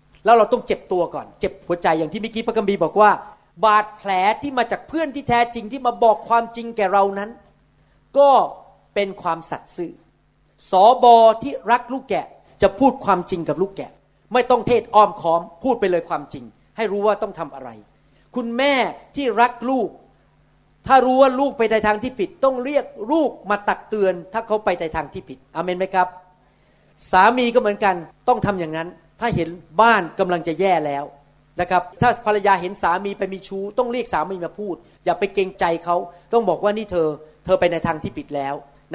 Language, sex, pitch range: Thai, male, 175-235 Hz